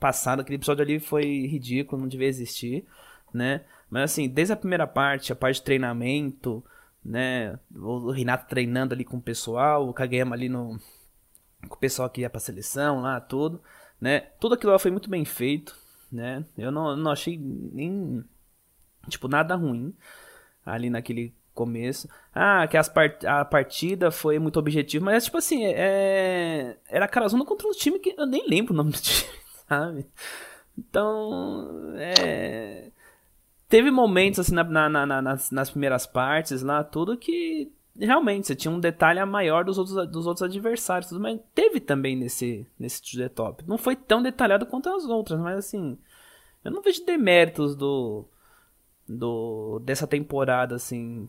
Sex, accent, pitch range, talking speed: male, Brazilian, 125-190 Hz, 160 wpm